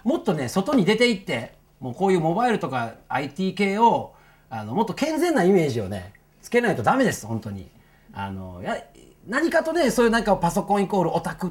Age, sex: 40-59, male